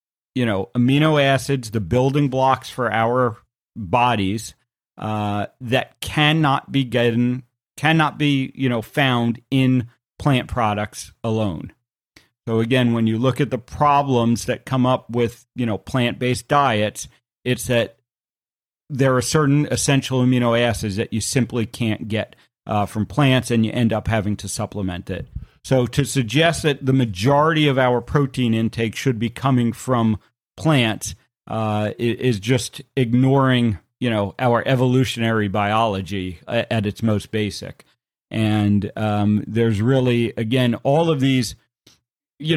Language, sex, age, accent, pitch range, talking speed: English, male, 40-59, American, 110-130 Hz, 140 wpm